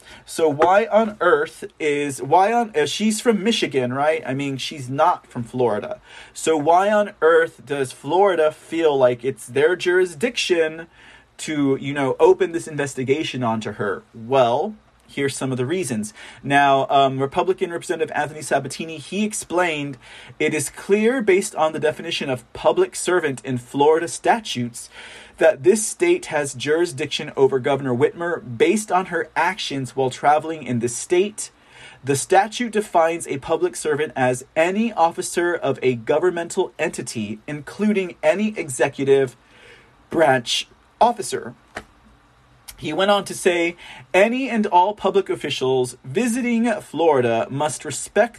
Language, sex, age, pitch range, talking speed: English, male, 30-49, 130-190 Hz, 140 wpm